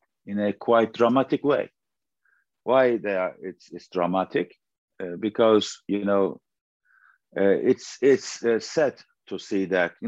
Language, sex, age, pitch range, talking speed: English, male, 50-69, 95-120 Hz, 135 wpm